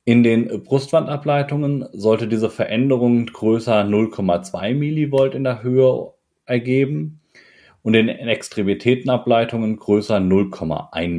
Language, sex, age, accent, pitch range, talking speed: German, male, 30-49, German, 90-120 Hz, 100 wpm